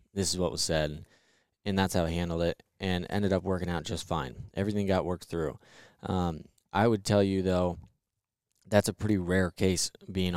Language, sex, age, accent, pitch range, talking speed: English, male, 20-39, American, 85-105 Hz, 195 wpm